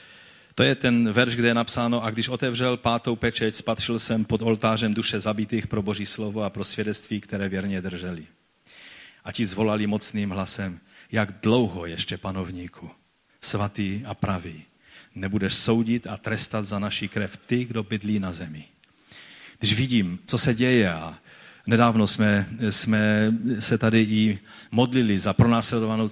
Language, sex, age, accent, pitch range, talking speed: Czech, male, 40-59, native, 100-120 Hz, 150 wpm